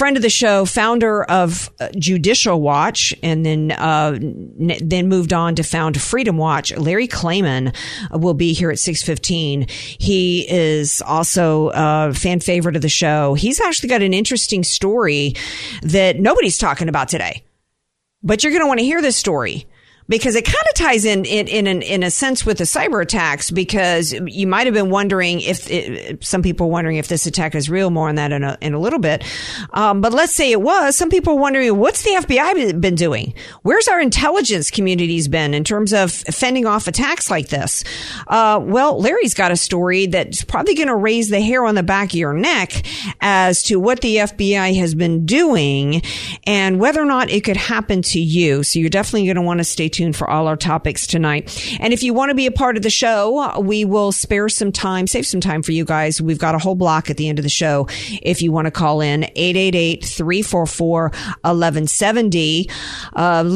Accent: American